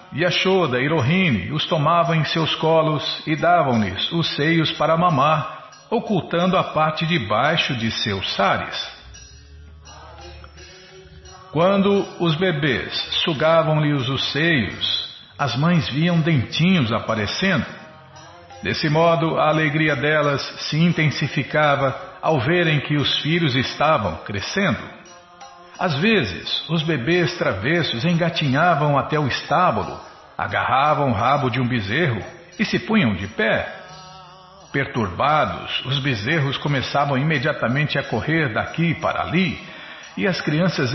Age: 50-69